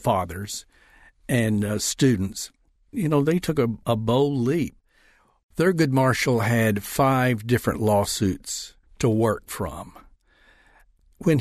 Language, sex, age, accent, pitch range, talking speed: English, male, 60-79, American, 105-130 Hz, 115 wpm